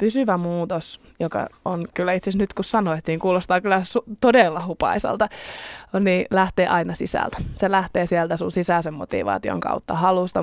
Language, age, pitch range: Finnish, 20-39, 165-190 Hz